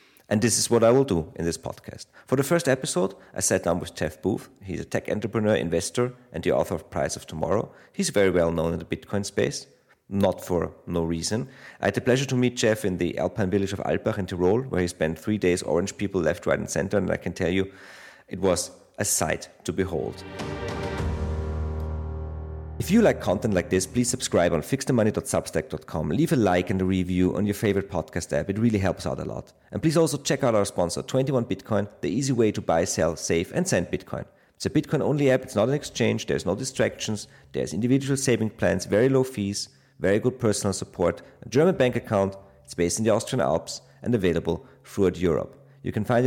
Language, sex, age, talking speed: English, male, 40-59, 215 wpm